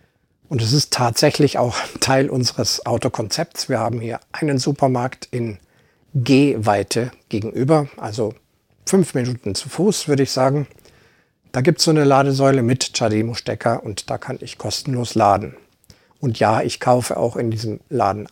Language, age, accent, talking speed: German, 50-69, German, 155 wpm